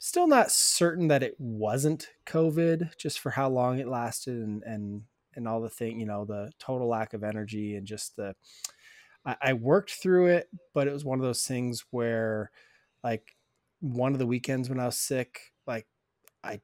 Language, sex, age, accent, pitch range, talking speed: English, male, 20-39, American, 120-160 Hz, 190 wpm